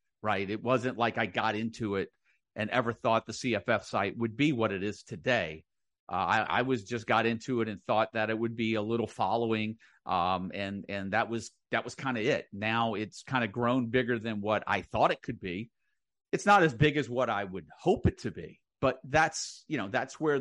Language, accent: English, American